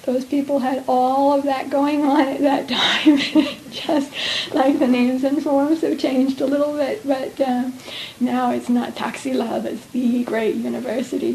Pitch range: 235-270 Hz